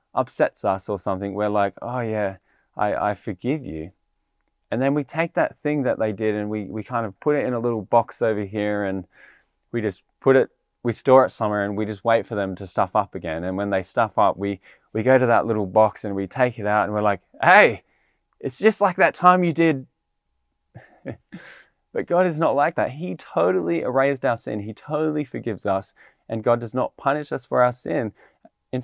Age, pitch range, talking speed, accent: 20-39, 100-135 Hz, 220 wpm, Australian